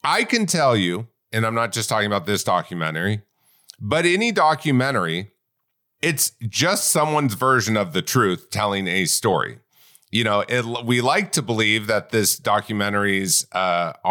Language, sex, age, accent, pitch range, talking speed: English, male, 40-59, American, 95-125 Hz, 150 wpm